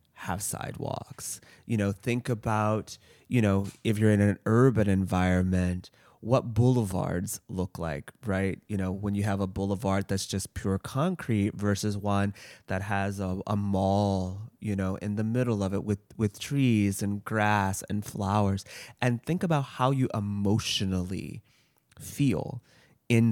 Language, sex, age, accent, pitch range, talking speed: English, male, 20-39, American, 95-110 Hz, 150 wpm